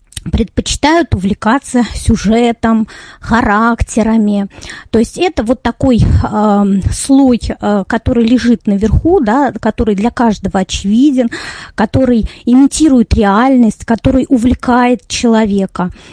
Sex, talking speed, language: female, 95 wpm, Russian